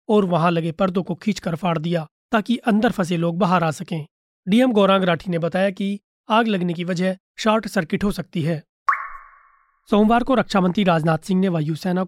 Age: 30-49